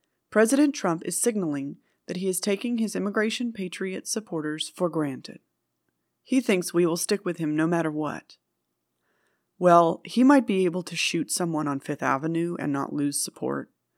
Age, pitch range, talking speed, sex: 30-49, 145-185 Hz, 170 wpm, female